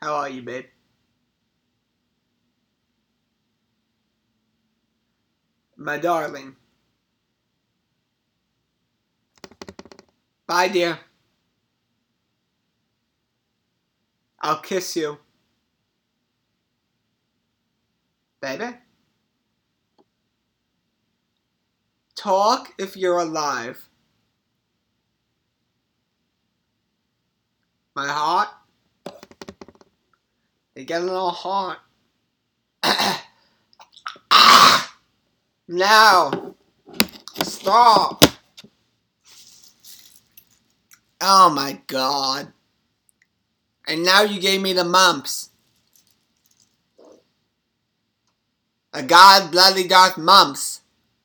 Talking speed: 45 wpm